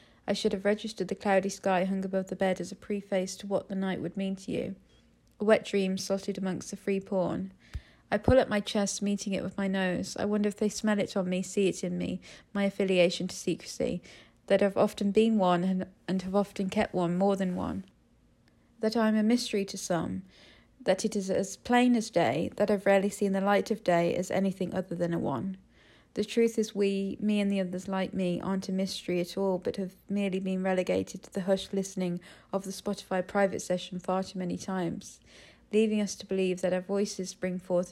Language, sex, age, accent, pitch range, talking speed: English, female, 40-59, British, 185-205 Hz, 225 wpm